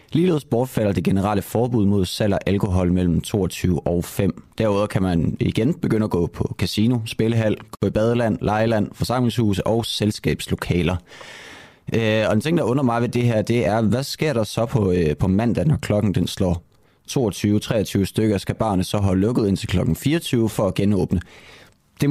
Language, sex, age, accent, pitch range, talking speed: Danish, male, 30-49, native, 90-110 Hz, 185 wpm